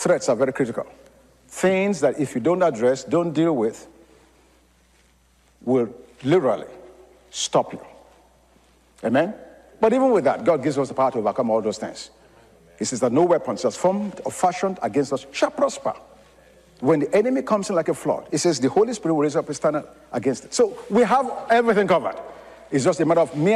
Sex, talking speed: male, 195 wpm